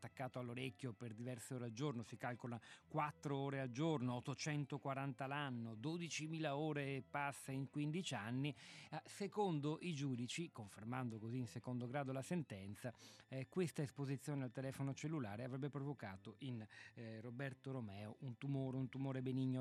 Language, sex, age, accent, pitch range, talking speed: Italian, male, 40-59, native, 110-140 Hz, 155 wpm